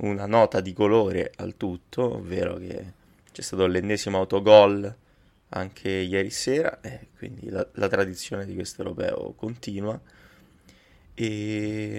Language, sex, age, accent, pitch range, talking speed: Italian, male, 20-39, native, 95-110 Hz, 125 wpm